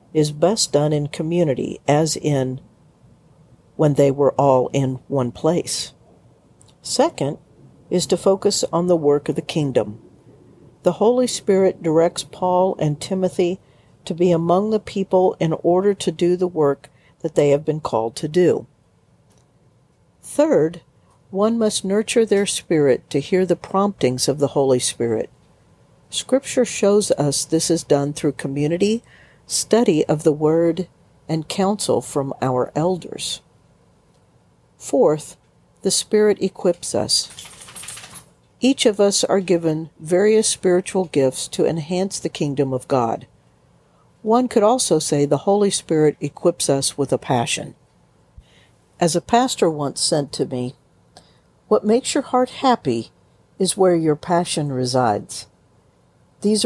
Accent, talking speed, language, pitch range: American, 135 wpm, English, 145-195 Hz